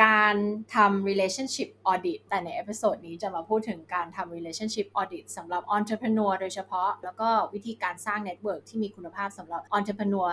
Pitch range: 180-230 Hz